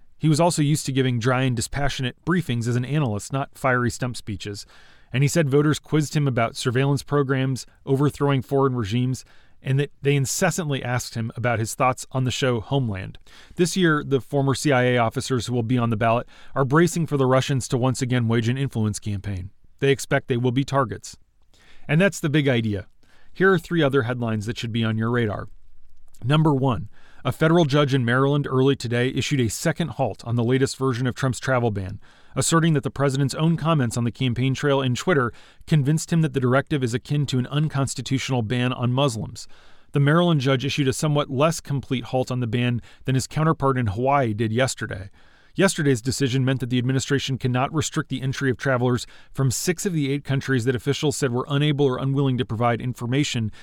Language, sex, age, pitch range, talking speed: English, male, 30-49, 120-140 Hz, 205 wpm